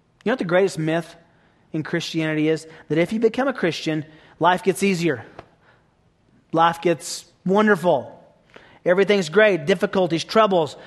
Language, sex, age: English, male, 30-49